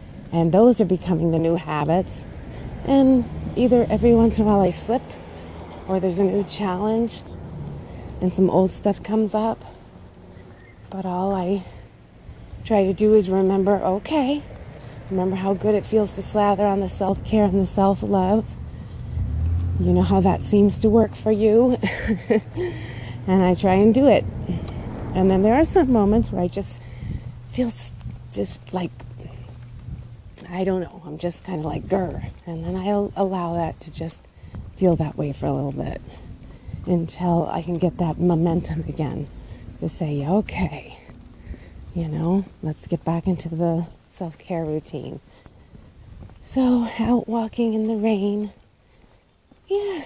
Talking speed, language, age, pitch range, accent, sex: 150 wpm, English, 30-49, 140-215 Hz, American, female